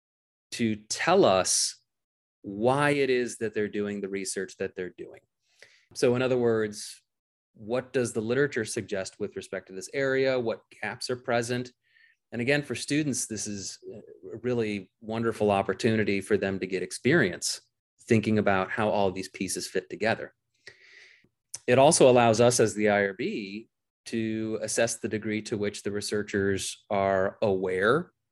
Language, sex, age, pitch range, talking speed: English, male, 30-49, 105-130 Hz, 155 wpm